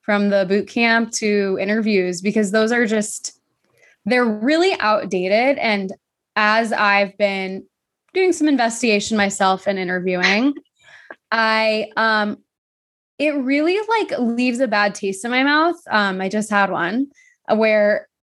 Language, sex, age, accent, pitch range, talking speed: English, female, 20-39, American, 210-290 Hz, 135 wpm